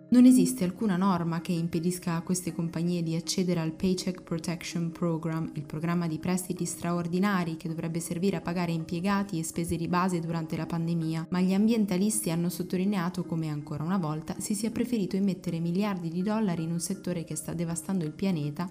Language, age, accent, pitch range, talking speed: Italian, 20-39, native, 165-190 Hz, 185 wpm